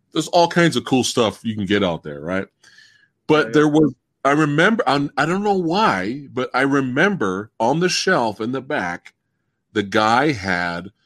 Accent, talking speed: American, 185 wpm